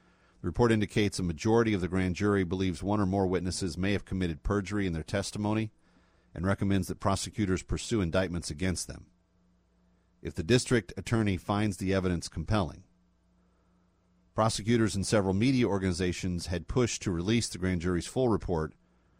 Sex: male